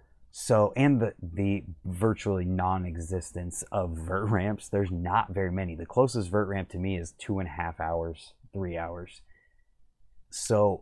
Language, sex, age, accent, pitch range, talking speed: English, male, 20-39, American, 85-100 Hz, 155 wpm